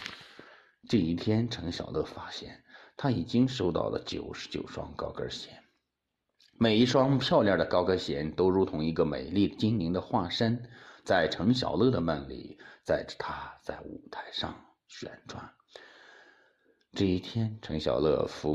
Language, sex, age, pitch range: Chinese, male, 50-69, 90-135 Hz